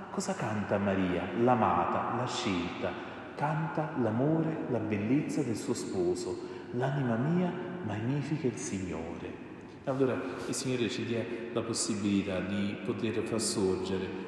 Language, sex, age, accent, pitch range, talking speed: Italian, male, 40-59, native, 100-130 Hz, 120 wpm